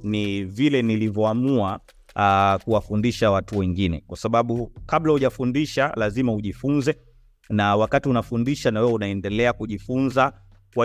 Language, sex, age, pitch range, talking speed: English, male, 30-49, 100-125 Hz, 115 wpm